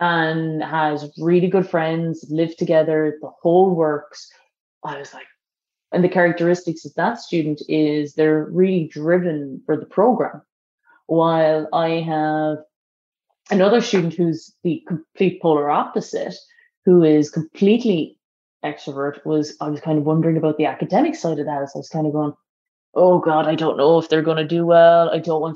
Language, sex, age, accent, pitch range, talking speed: English, female, 20-39, Irish, 150-165 Hz, 170 wpm